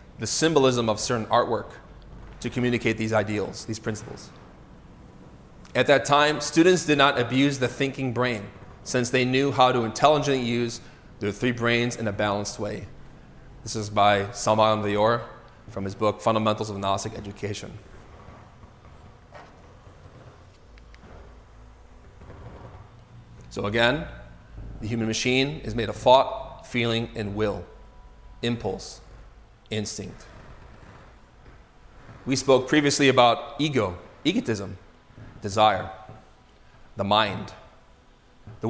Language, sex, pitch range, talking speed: English, male, 105-125 Hz, 110 wpm